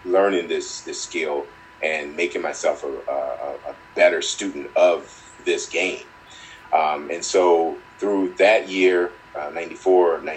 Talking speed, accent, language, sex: 135 wpm, American, English, male